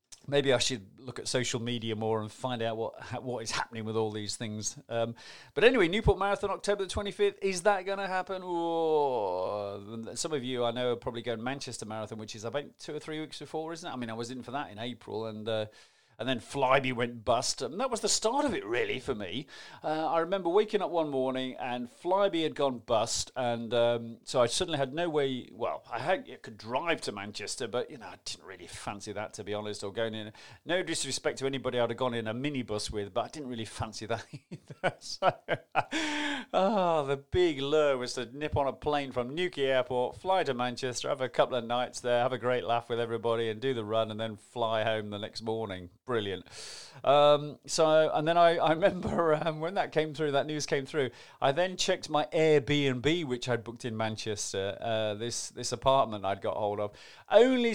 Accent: British